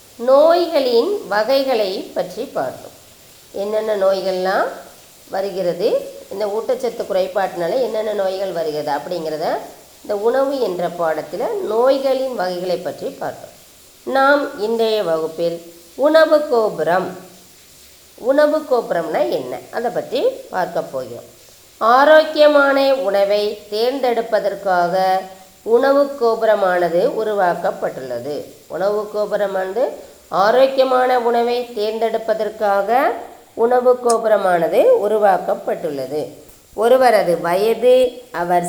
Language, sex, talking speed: Tamil, female, 80 wpm